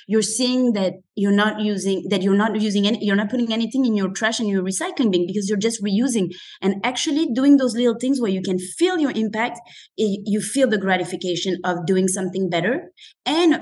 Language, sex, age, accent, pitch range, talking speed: English, female, 20-39, French, 195-265 Hz, 205 wpm